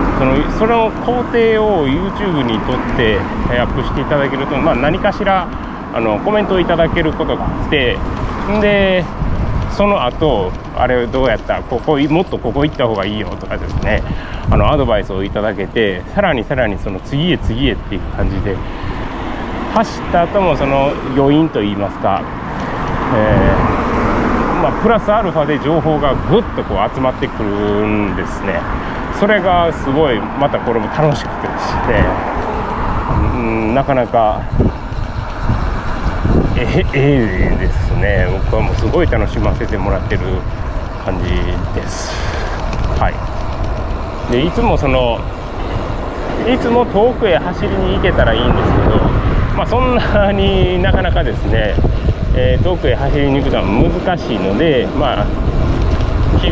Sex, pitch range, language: male, 100-165 Hz, Japanese